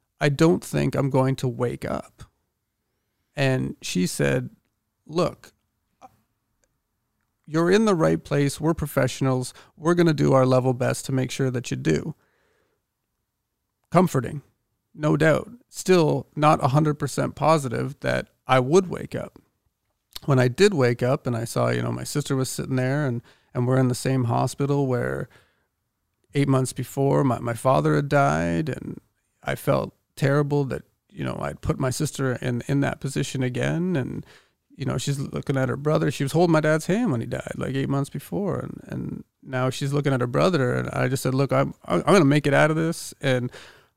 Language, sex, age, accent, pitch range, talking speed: English, male, 40-59, American, 125-150 Hz, 185 wpm